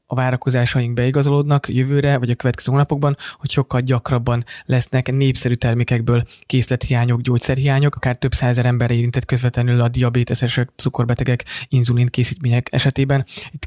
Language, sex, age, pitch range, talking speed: Hungarian, male, 20-39, 125-135 Hz, 125 wpm